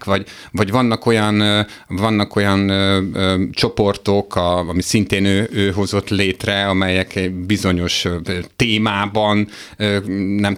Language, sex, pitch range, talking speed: Hungarian, male, 95-115 Hz, 115 wpm